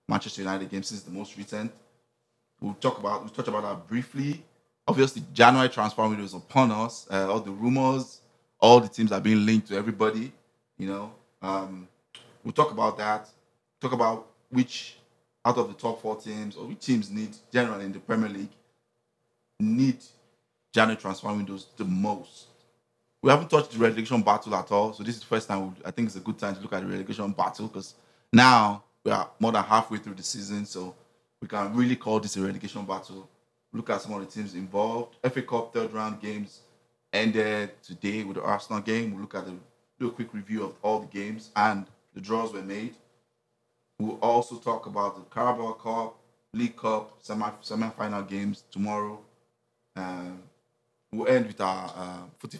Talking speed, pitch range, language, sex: 190 wpm, 105-120 Hz, English, male